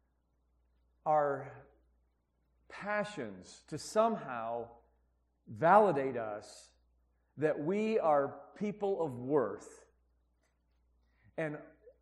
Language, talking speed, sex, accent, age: English, 65 wpm, male, American, 50-69